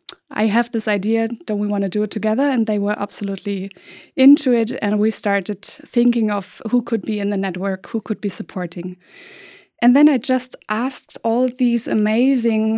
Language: English